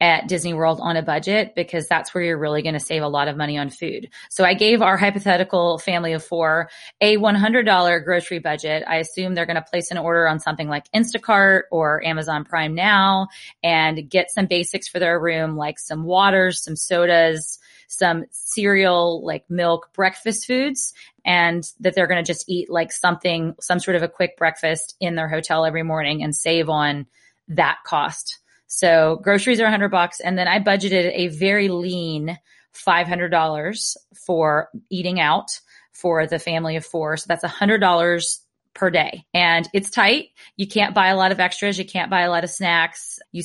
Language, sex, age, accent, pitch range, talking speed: English, female, 20-39, American, 160-185 Hz, 190 wpm